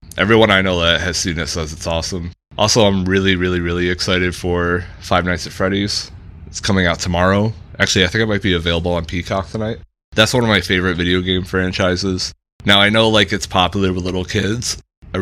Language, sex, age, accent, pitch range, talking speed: English, male, 20-39, American, 85-95 Hz, 210 wpm